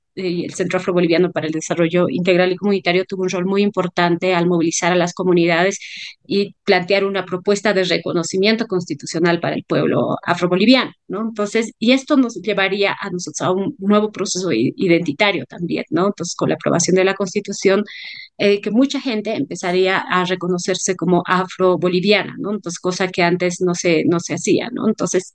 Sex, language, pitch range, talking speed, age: female, Spanish, 175-200 Hz, 175 wpm, 30-49